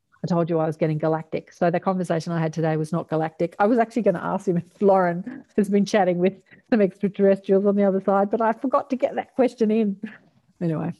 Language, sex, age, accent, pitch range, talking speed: English, female, 40-59, Australian, 165-200 Hz, 240 wpm